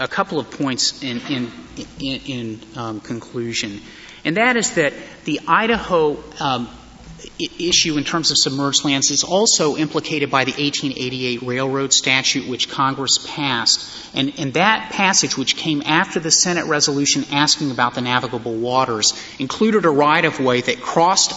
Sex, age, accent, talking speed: male, 30-49, American, 155 wpm